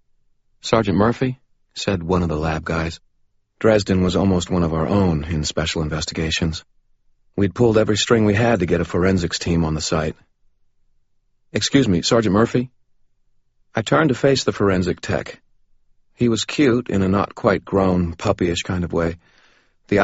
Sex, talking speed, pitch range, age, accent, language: male, 160 wpm, 85-105 Hz, 40-59, American, English